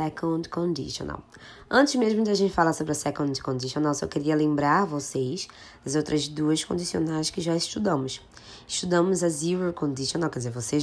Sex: female